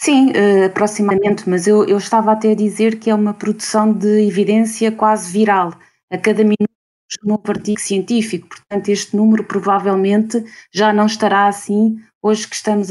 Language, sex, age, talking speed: Portuguese, female, 20-39, 165 wpm